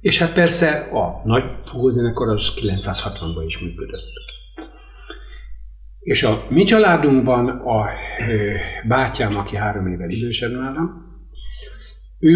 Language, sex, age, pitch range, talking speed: Hungarian, male, 60-79, 95-160 Hz, 95 wpm